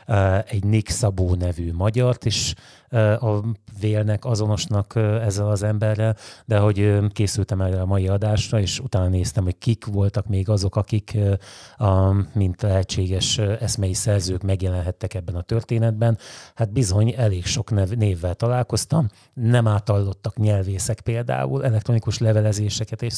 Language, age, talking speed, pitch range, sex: Hungarian, 30-49, 125 wpm, 95-115 Hz, male